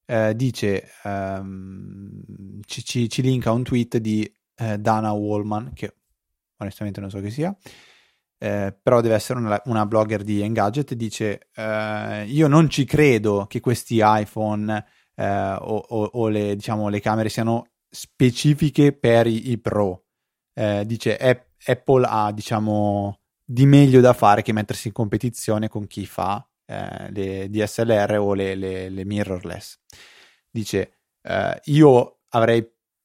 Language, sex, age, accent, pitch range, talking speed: Italian, male, 20-39, native, 100-120 Hz, 145 wpm